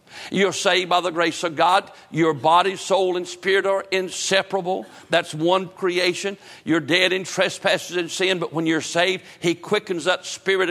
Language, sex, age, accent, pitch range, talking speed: English, male, 60-79, American, 160-185 Hz, 175 wpm